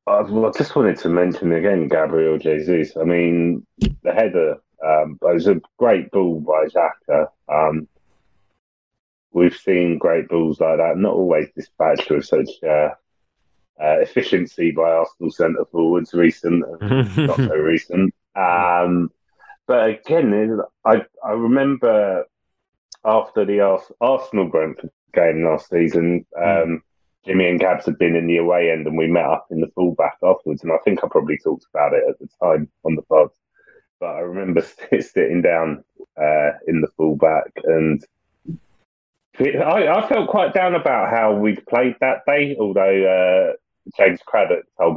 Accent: British